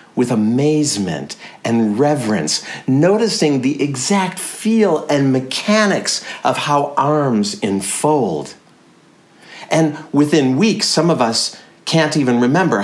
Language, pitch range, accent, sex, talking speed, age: English, 115-160 Hz, American, male, 110 wpm, 50-69